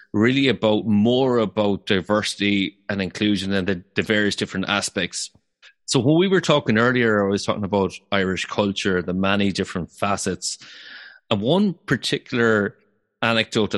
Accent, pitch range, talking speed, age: Irish, 100-125 Hz, 145 wpm, 30-49